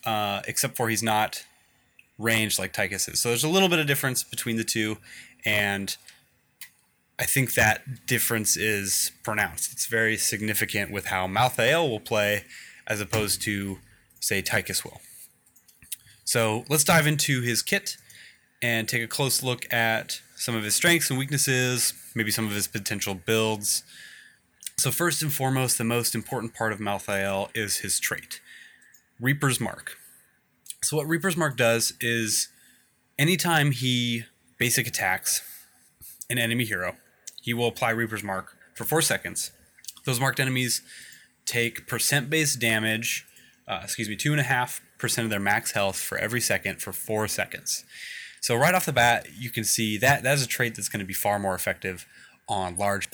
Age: 20-39